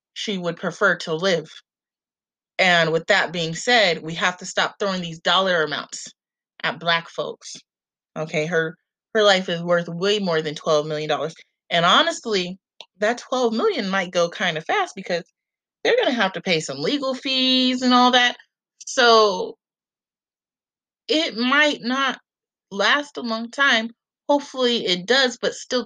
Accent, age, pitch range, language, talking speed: American, 30-49, 170-235 Hz, English, 160 wpm